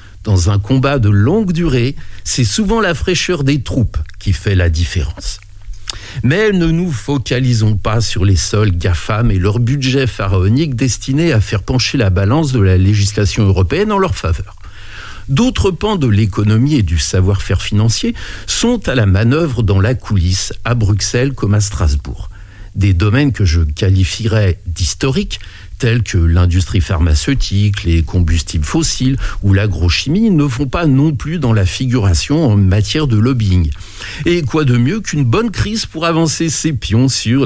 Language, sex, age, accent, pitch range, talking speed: French, male, 60-79, French, 95-135 Hz, 160 wpm